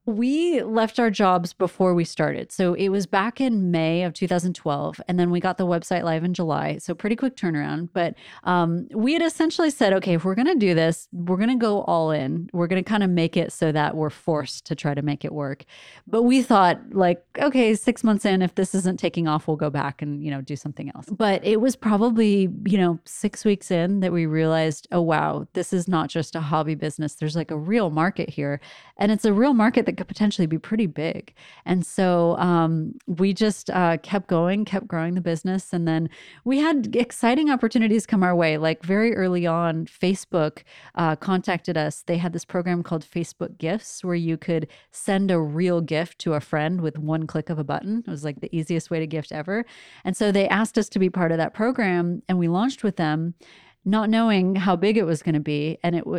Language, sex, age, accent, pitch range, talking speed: English, female, 30-49, American, 160-210 Hz, 225 wpm